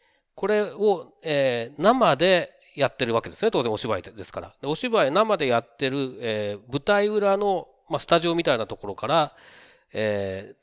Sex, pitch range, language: male, 115-190 Hz, Japanese